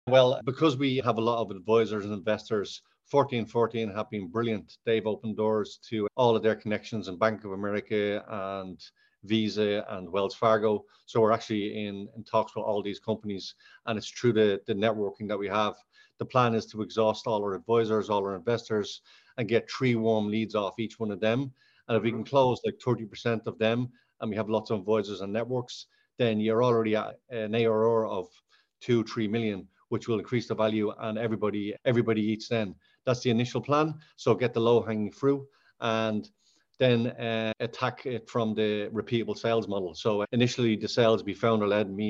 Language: English